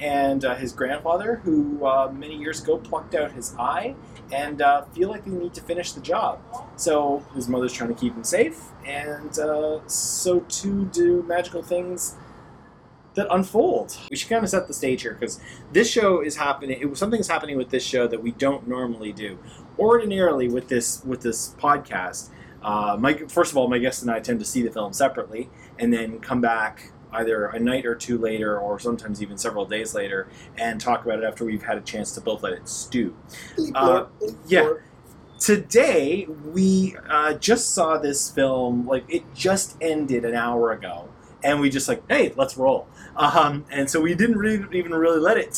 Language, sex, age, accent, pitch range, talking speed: English, male, 30-49, American, 125-175 Hz, 195 wpm